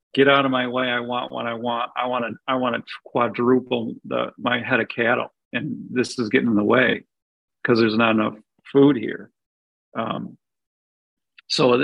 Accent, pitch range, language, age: American, 120-150 Hz, English, 40-59